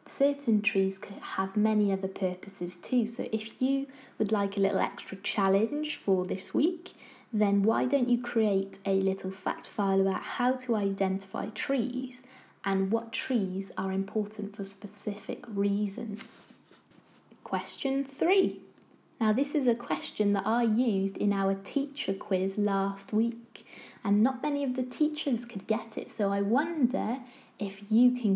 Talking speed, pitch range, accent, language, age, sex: 155 wpm, 195-260 Hz, British, English, 20-39, female